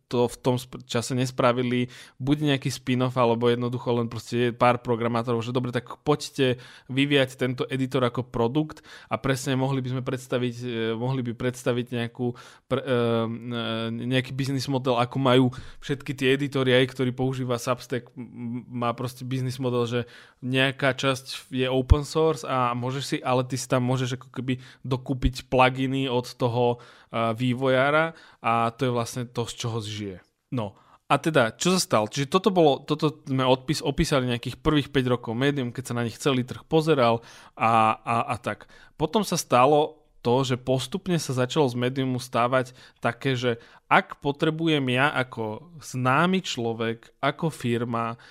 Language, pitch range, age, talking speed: Slovak, 120-135 Hz, 20-39, 160 wpm